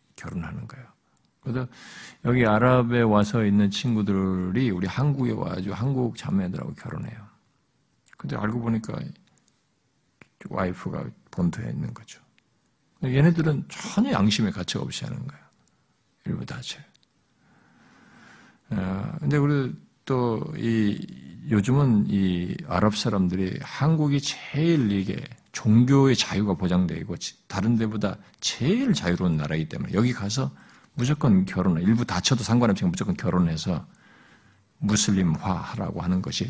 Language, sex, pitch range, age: Korean, male, 100-150 Hz, 50-69